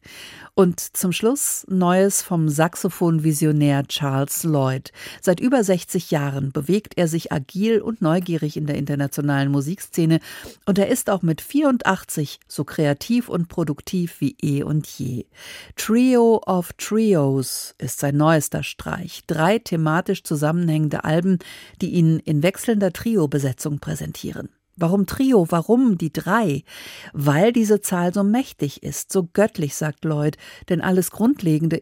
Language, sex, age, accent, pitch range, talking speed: German, female, 50-69, German, 155-195 Hz, 135 wpm